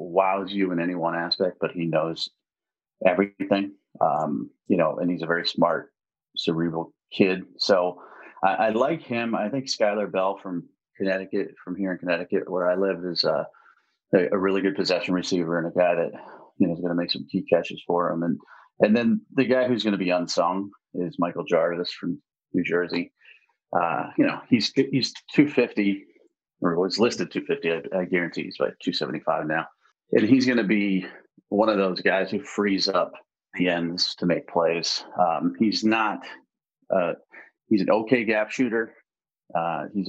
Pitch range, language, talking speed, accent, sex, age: 90-110 Hz, English, 185 wpm, American, male, 30-49